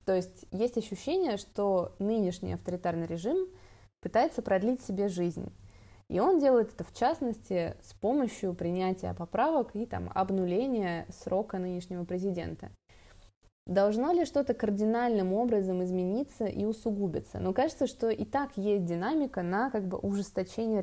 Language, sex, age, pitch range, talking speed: Russian, female, 20-39, 175-225 Hz, 125 wpm